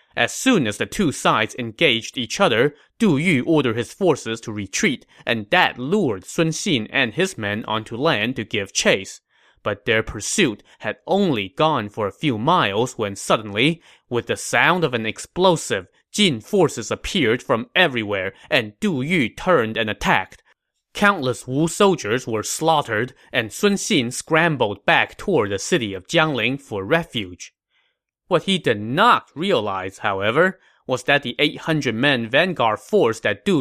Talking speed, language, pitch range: 160 wpm, English, 115-175 Hz